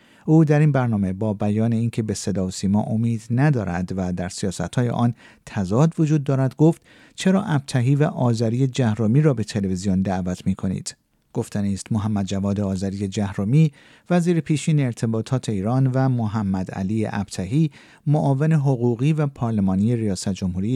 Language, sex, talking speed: Persian, male, 145 wpm